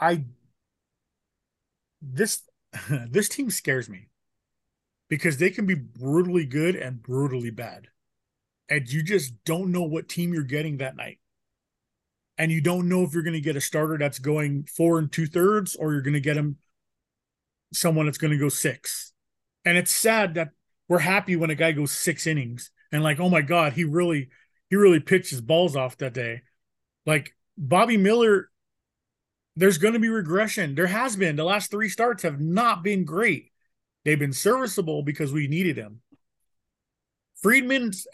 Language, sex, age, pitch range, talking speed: English, male, 30-49, 140-180 Hz, 170 wpm